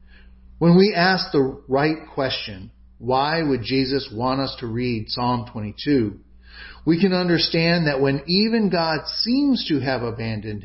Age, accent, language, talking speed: 40-59, American, English, 145 wpm